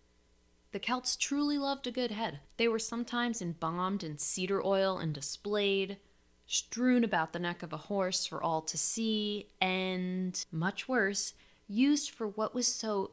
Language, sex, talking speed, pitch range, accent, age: English, female, 160 wpm, 160-210 Hz, American, 20-39